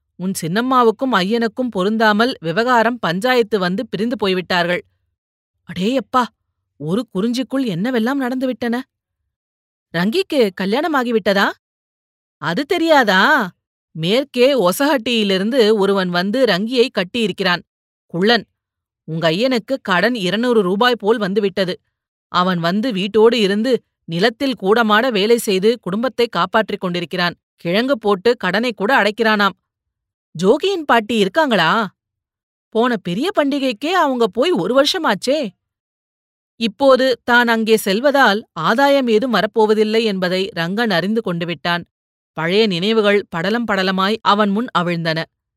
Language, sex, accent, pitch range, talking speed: Tamil, female, native, 185-245 Hz, 100 wpm